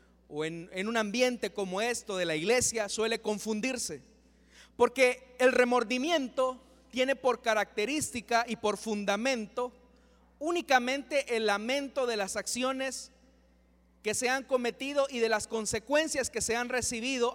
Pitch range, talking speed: 215-260 Hz, 135 wpm